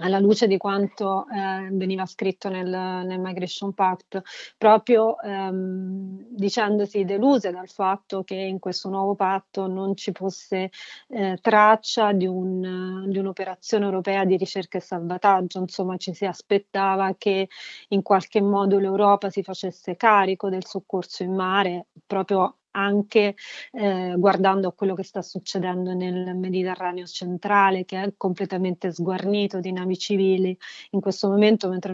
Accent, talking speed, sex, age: native, 140 wpm, female, 30-49